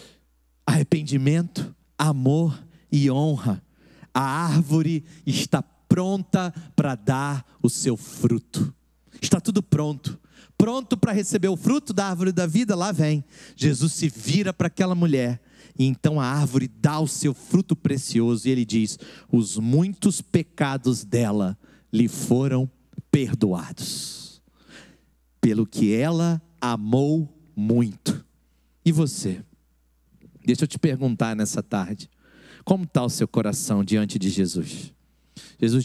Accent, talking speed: Brazilian, 125 wpm